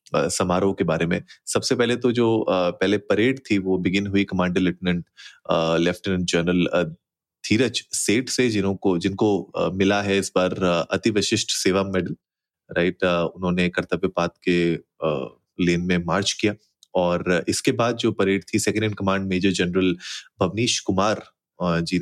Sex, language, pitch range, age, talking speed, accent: male, Hindi, 90-105 Hz, 30-49, 145 wpm, native